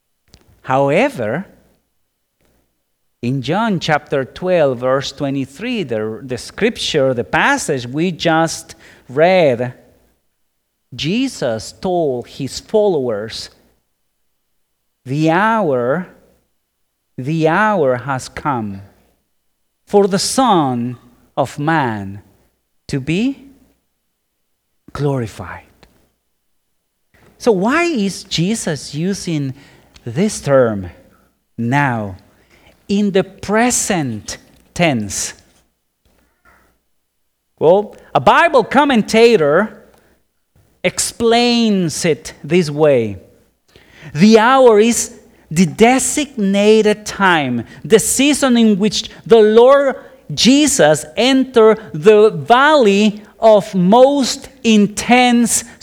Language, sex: English, male